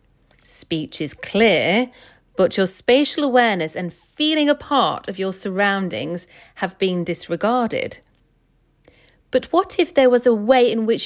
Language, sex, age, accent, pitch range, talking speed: English, female, 40-59, British, 165-245 Hz, 140 wpm